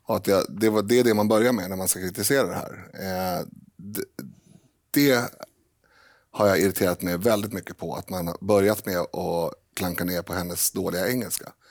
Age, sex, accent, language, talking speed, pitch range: 30-49, male, native, Swedish, 170 wpm, 90-110 Hz